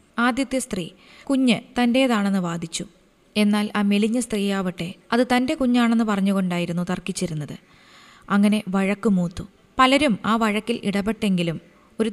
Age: 20-39